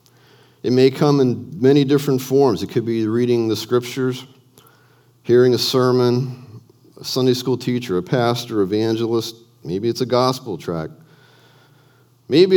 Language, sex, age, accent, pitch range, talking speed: English, male, 40-59, American, 100-130 Hz, 140 wpm